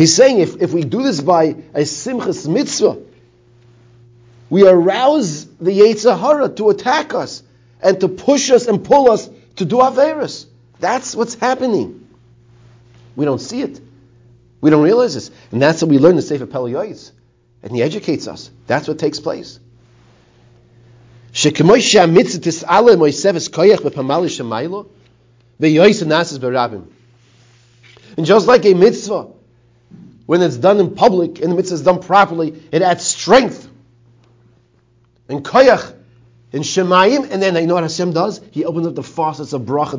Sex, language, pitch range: male, English, 120-175 Hz